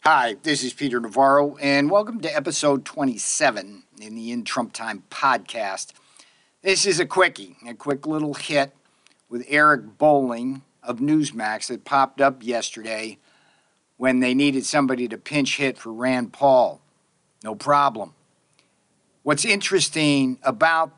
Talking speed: 135 wpm